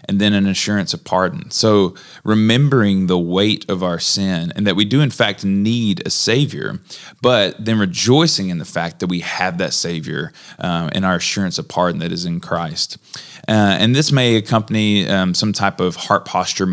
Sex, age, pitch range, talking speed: male, 20-39, 95-115 Hz, 195 wpm